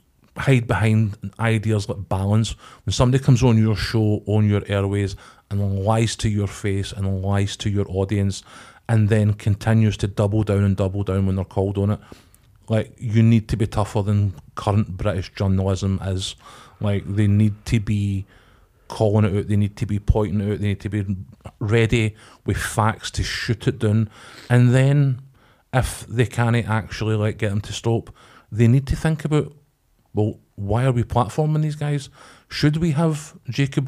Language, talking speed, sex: English, 180 wpm, male